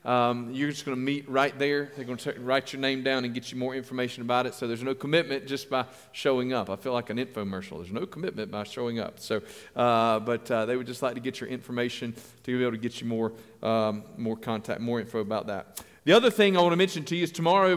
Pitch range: 125-160 Hz